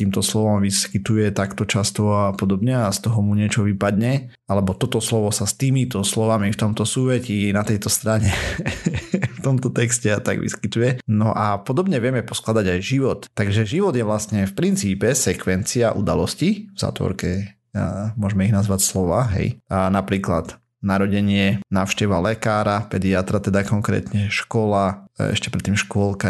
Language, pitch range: Slovak, 95-115 Hz